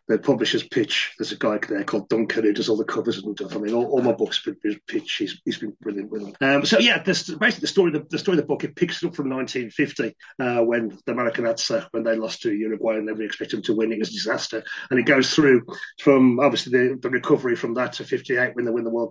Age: 30-49